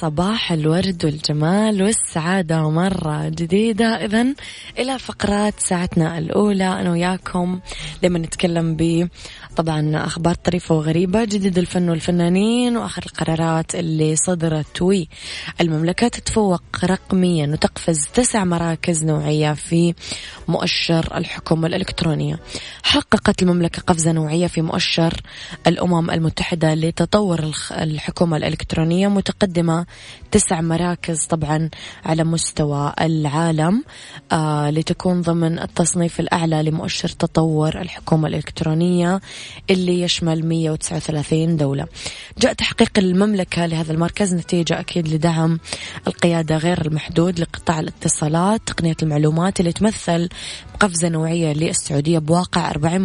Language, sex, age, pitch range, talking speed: Arabic, female, 20-39, 160-185 Hz, 105 wpm